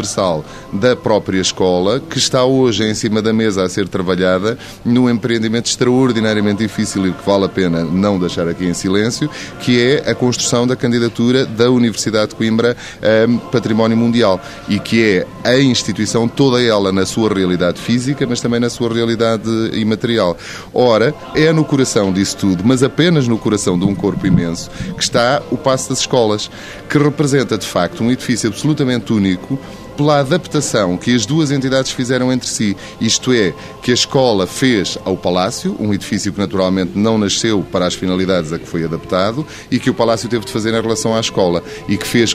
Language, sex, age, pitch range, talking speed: Portuguese, male, 20-39, 100-130 Hz, 185 wpm